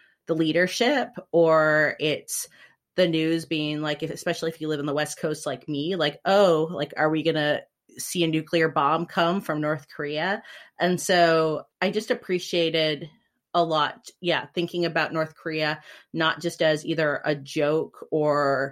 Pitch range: 150-175 Hz